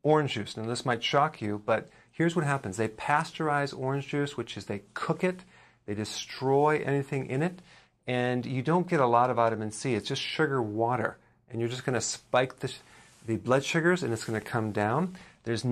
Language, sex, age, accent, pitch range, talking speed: English, male, 40-59, American, 115-145 Hz, 210 wpm